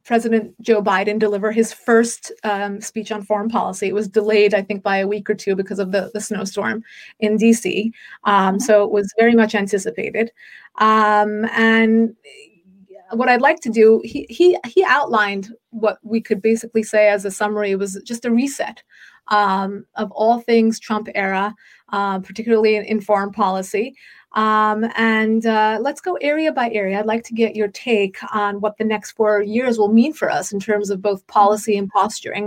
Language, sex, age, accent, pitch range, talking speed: English, female, 30-49, American, 205-225 Hz, 190 wpm